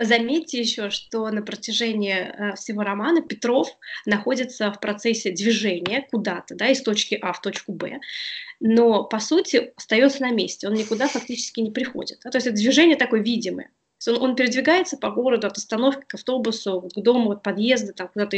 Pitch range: 210-255 Hz